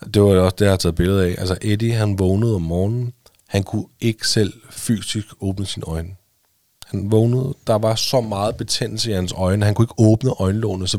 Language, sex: Danish, male